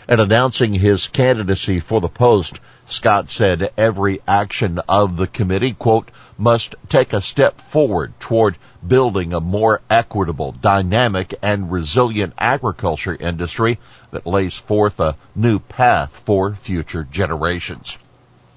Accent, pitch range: American, 95-120 Hz